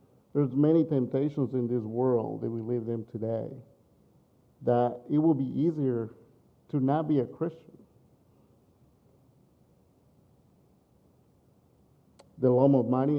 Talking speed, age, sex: 115 wpm, 50-69, male